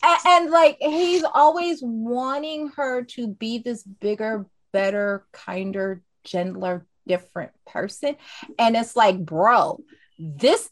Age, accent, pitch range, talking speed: 20-39, American, 180-255 Hz, 120 wpm